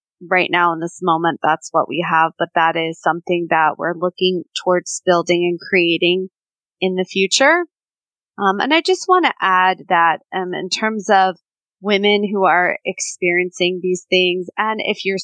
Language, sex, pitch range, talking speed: English, female, 175-205 Hz, 175 wpm